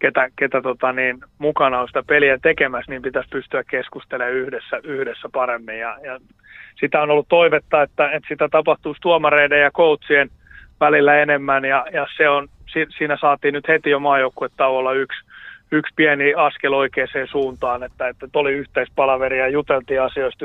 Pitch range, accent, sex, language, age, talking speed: 130-150 Hz, native, male, Finnish, 30-49, 165 wpm